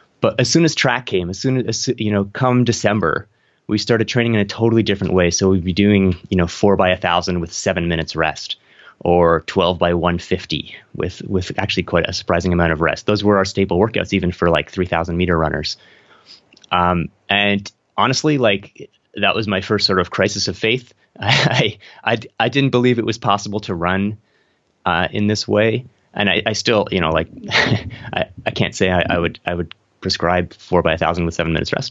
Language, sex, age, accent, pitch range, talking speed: English, male, 30-49, American, 90-105 Hz, 205 wpm